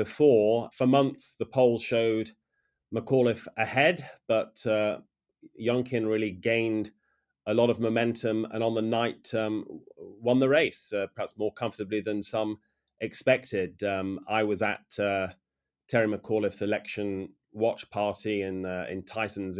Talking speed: 140 wpm